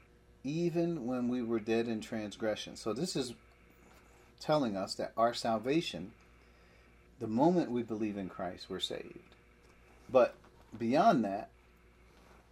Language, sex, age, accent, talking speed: English, male, 40-59, American, 125 wpm